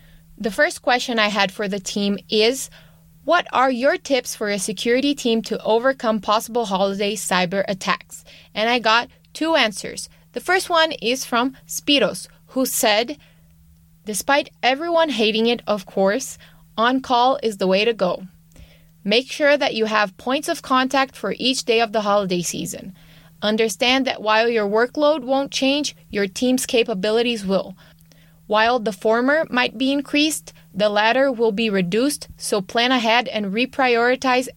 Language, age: English, 20-39